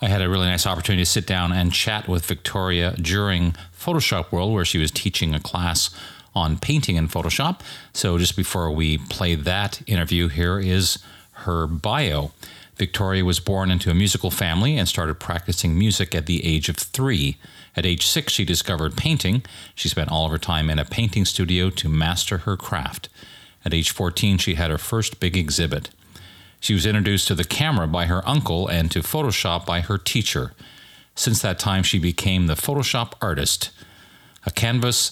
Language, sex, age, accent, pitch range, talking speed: English, male, 40-59, American, 85-105 Hz, 185 wpm